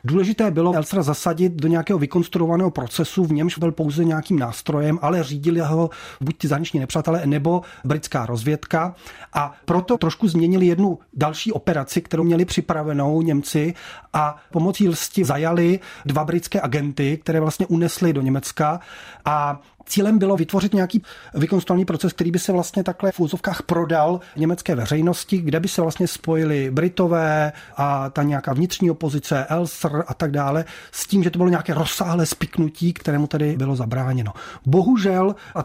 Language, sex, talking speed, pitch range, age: Czech, male, 155 wpm, 150-180 Hz, 30-49